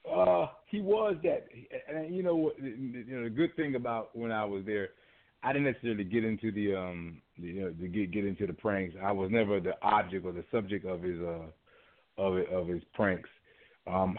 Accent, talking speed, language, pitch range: American, 205 wpm, English, 90-110 Hz